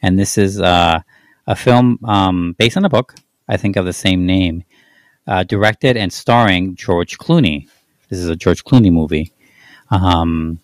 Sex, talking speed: male, 170 wpm